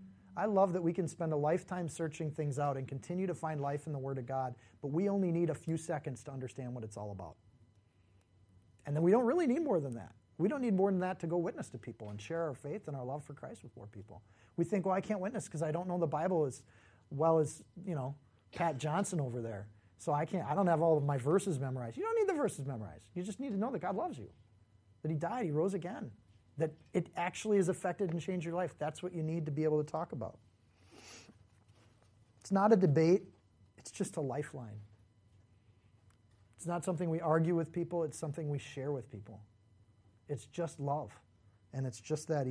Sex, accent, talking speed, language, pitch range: male, American, 235 wpm, English, 110-170 Hz